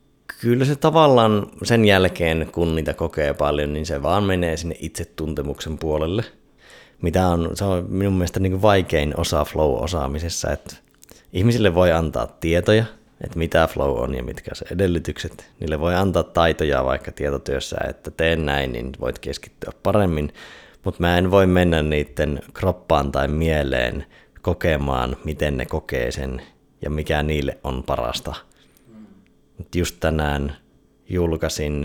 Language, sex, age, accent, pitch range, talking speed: Finnish, male, 30-49, native, 75-90 Hz, 140 wpm